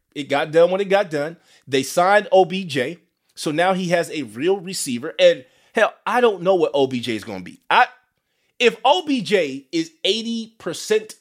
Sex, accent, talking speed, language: male, American, 180 wpm, English